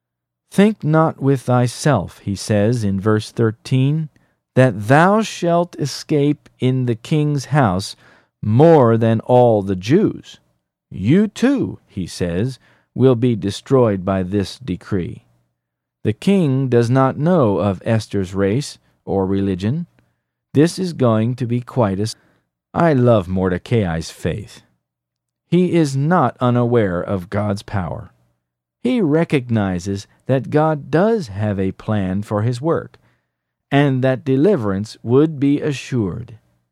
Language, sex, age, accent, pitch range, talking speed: English, male, 40-59, American, 95-140 Hz, 125 wpm